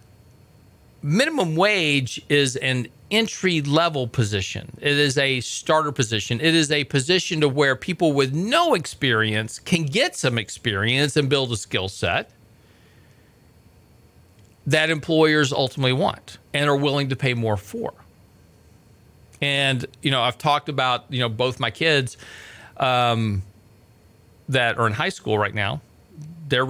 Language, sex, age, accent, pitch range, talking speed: English, male, 40-59, American, 110-145 Hz, 135 wpm